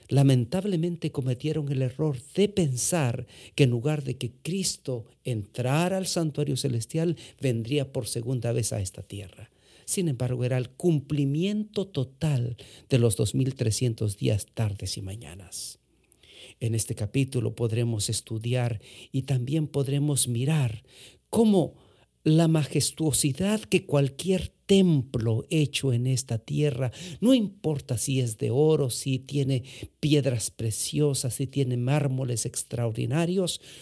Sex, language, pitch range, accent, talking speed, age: male, English, 115-150 Hz, Mexican, 120 wpm, 50-69